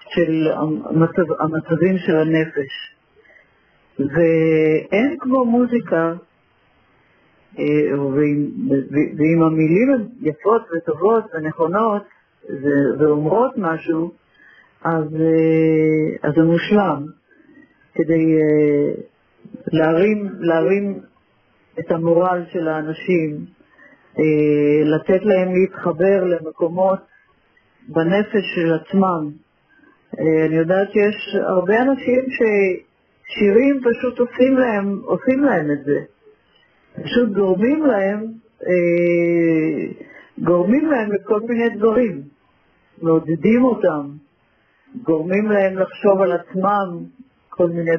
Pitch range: 160-215 Hz